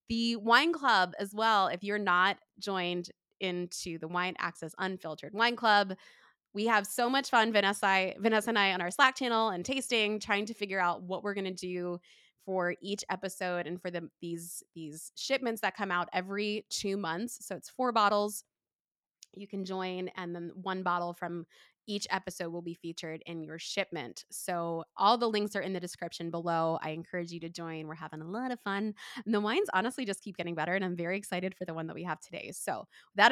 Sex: female